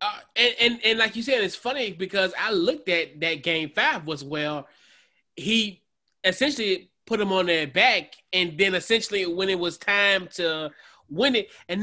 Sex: male